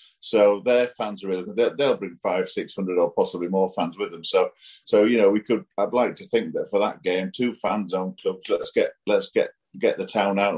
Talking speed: 240 wpm